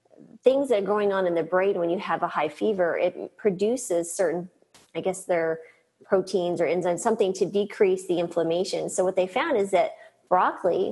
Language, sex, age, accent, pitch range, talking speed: English, female, 30-49, American, 175-205 Hz, 190 wpm